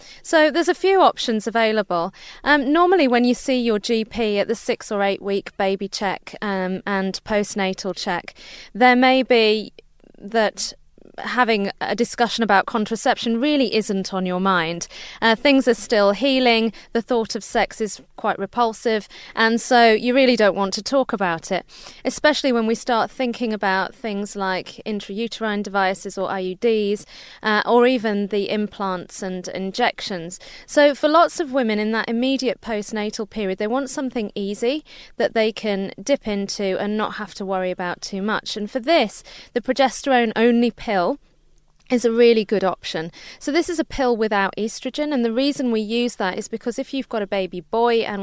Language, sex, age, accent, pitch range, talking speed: English, female, 30-49, British, 195-245 Hz, 175 wpm